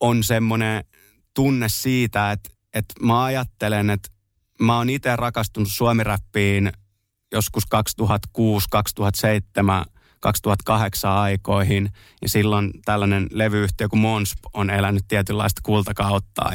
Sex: male